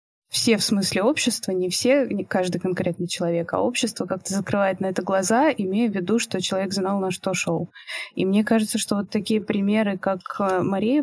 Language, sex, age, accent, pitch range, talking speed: Russian, female, 20-39, native, 180-210 Hz, 190 wpm